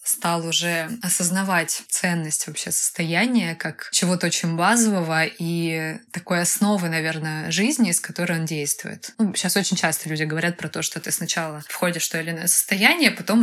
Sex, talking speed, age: female, 165 wpm, 20-39